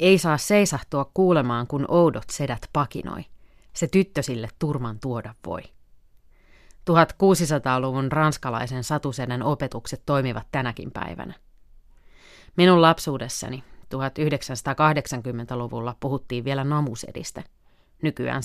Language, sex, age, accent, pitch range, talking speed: Finnish, female, 30-49, native, 120-155 Hz, 90 wpm